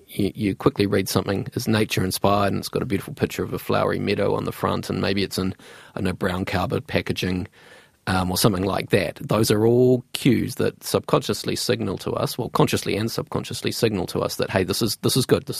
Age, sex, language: 30-49, male, English